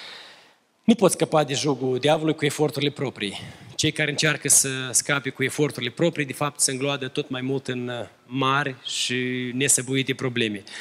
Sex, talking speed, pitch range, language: male, 160 wpm, 130-155 Hz, Romanian